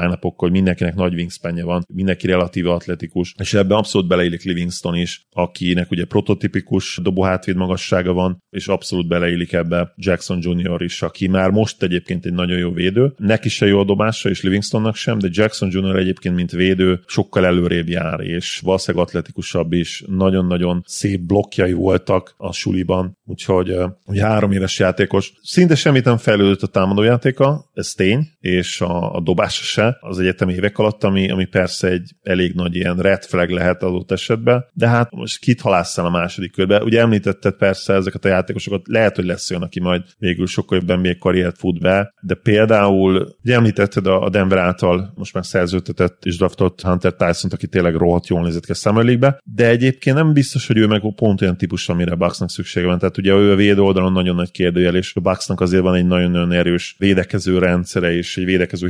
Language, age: Hungarian, 30-49